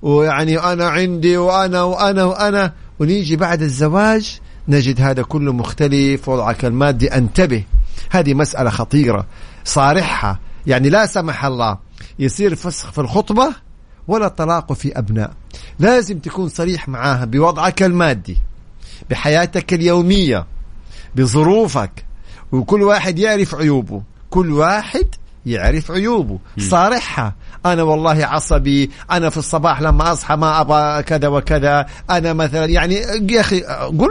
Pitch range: 130-190 Hz